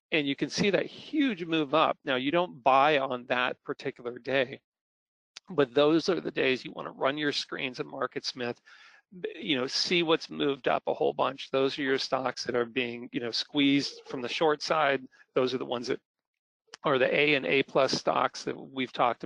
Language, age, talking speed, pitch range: English, 40-59, 210 wpm, 130-160 Hz